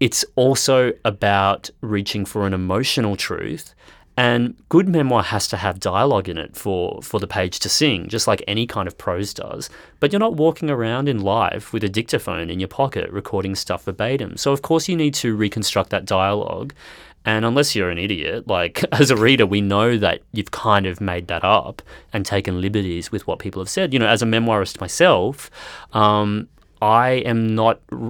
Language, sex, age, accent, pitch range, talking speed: English, male, 30-49, Australian, 95-115 Hz, 195 wpm